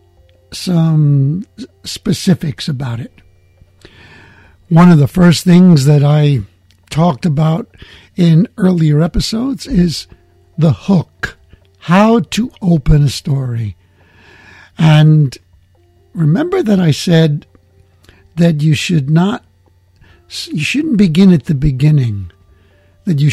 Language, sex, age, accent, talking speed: English, male, 60-79, American, 105 wpm